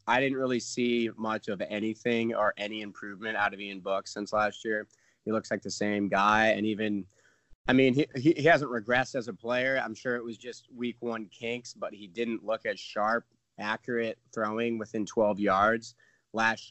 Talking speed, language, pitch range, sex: 195 wpm, English, 105-120 Hz, male